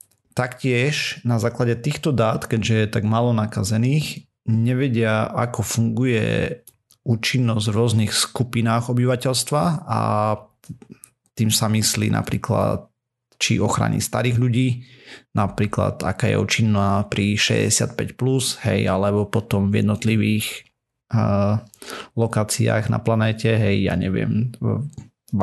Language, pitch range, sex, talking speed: Slovak, 105-125 Hz, male, 110 wpm